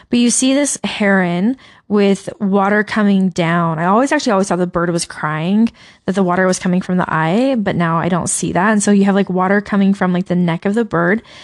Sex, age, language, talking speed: female, 20-39, English, 240 wpm